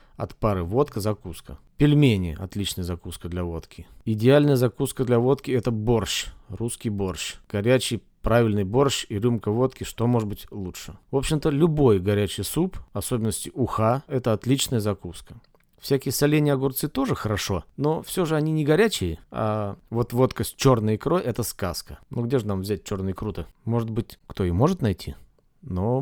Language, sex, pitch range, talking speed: Russian, male, 105-135 Hz, 165 wpm